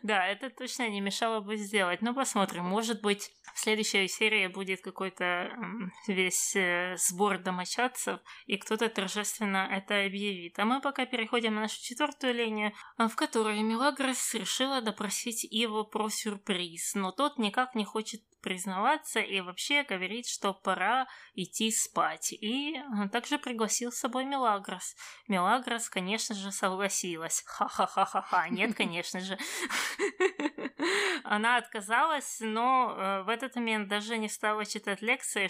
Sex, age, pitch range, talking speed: female, 20-39, 195-245 Hz, 135 wpm